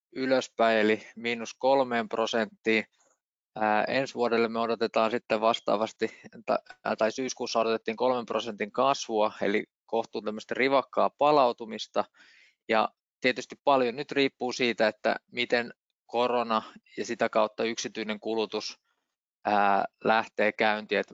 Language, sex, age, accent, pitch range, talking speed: Finnish, male, 20-39, native, 110-120 Hz, 115 wpm